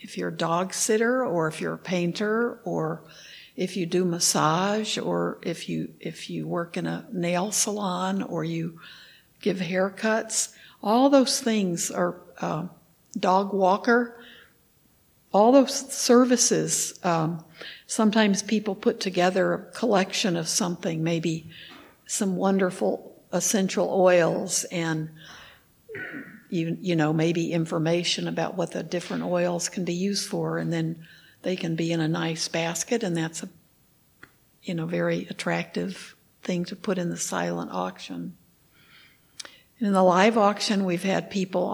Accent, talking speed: American, 140 wpm